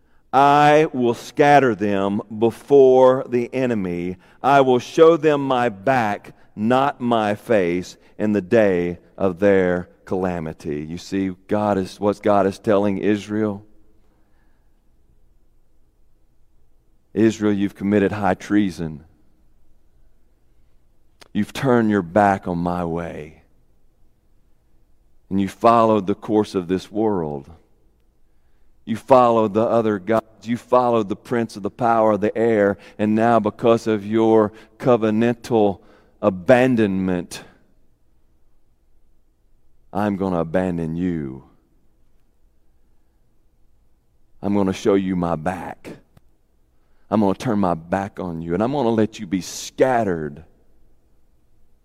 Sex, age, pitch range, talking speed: male, 40-59, 85-110 Hz, 115 wpm